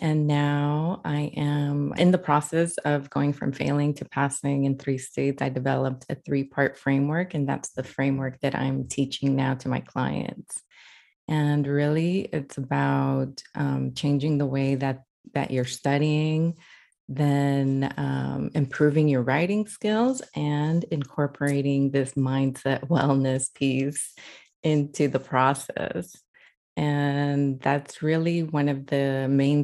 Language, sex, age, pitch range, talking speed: English, female, 30-49, 135-150 Hz, 135 wpm